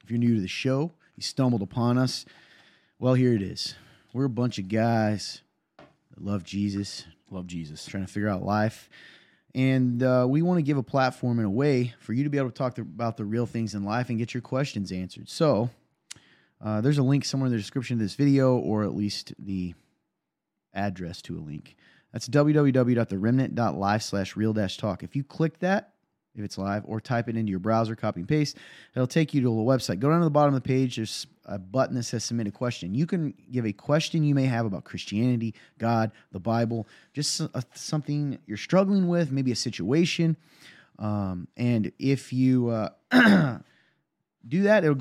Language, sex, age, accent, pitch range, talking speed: English, male, 30-49, American, 110-140 Hz, 200 wpm